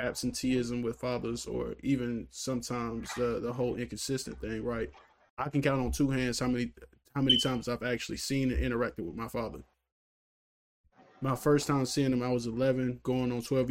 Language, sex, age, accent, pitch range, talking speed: English, male, 20-39, American, 115-135 Hz, 185 wpm